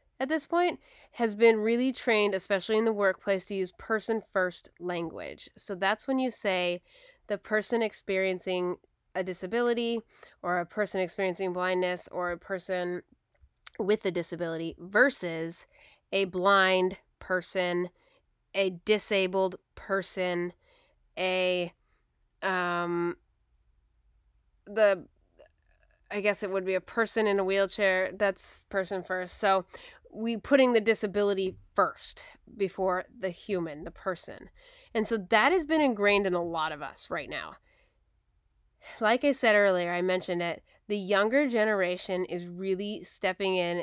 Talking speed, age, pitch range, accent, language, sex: 130 wpm, 20-39, 180-220 Hz, American, English, female